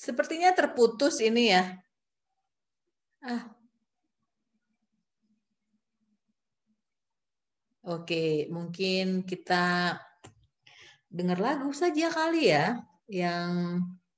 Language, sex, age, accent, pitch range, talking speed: Indonesian, female, 30-49, native, 155-220 Hz, 60 wpm